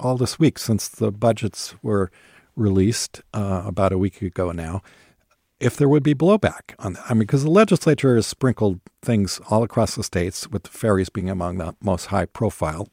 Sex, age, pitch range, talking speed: male, 50-69, 95-125 Hz, 195 wpm